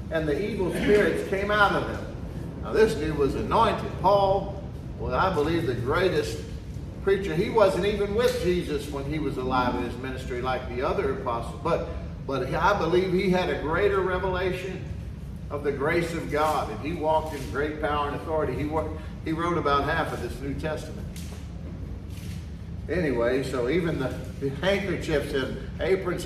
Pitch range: 130-175 Hz